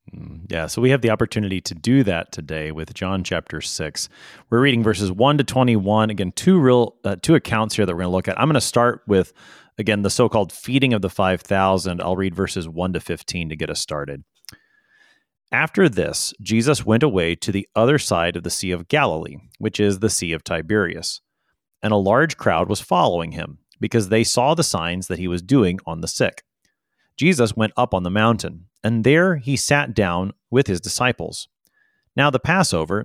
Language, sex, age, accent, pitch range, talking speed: English, male, 30-49, American, 90-120 Hz, 205 wpm